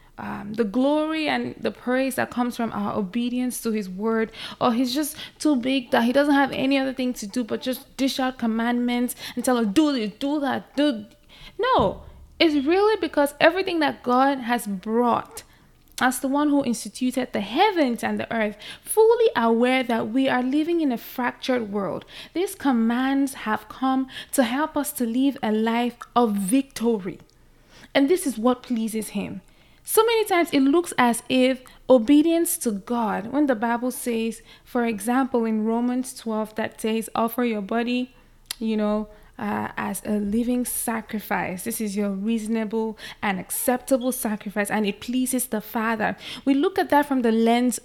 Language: English